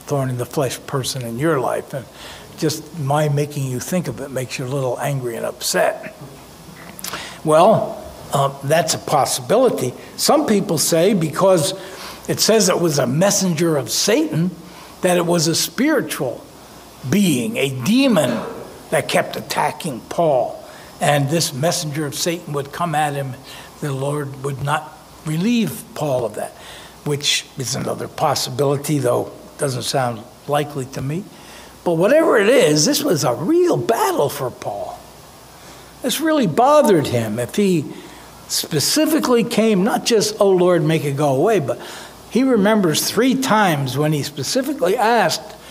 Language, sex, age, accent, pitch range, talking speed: English, male, 60-79, American, 140-195 Hz, 150 wpm